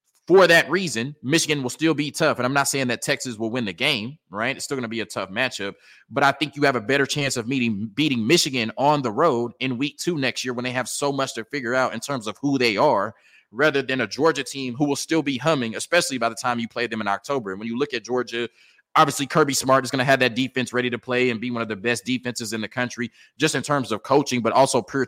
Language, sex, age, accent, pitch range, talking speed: English, male, 20-39, American, 115-140 Hz, 280 wpm